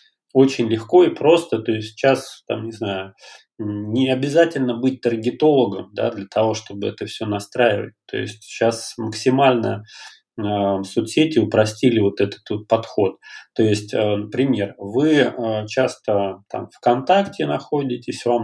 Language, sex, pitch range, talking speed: Russian, male, 110-125 Hz, 130 wpm